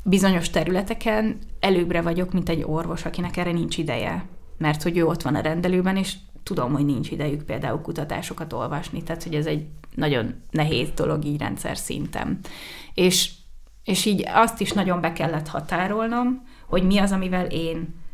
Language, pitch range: Hungarian, 155-185 Hz